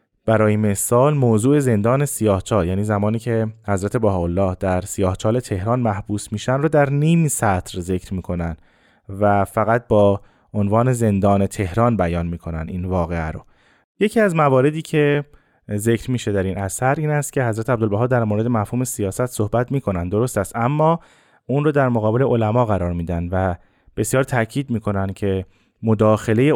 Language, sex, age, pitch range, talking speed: Persian, male, 20-39, 100-125 Hz, 155 wpm